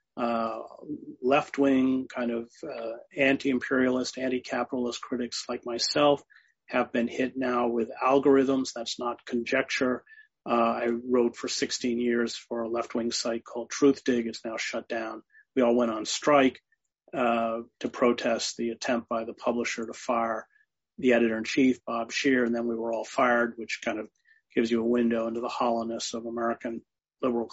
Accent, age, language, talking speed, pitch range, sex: American, 40-59, English, 160 wpm, 115-135 Hz, male